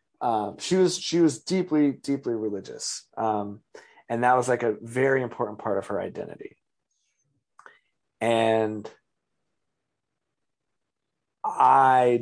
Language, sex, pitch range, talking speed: English, male, 105-135 Hz, 110 wpm